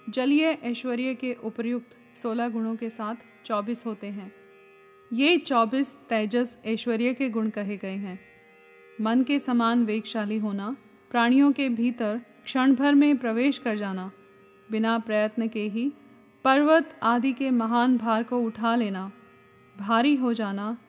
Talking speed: 140 wpm